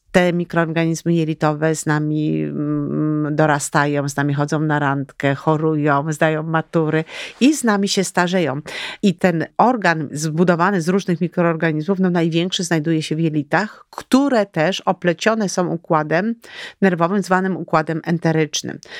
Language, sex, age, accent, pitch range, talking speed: Polish, female, 40-59, native, 155-190 Hz, 125 wpm